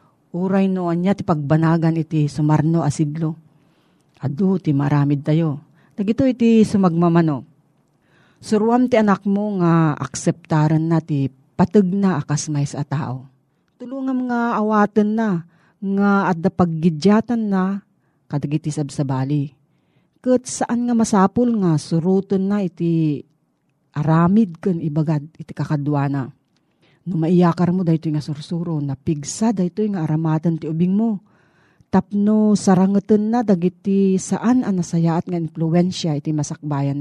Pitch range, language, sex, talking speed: 155-195 Hz, Filipino, female, 125 wpm